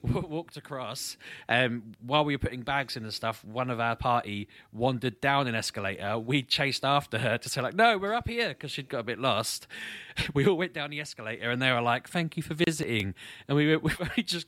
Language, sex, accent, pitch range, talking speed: English, male, British, 100-145 Hz, 230 wpm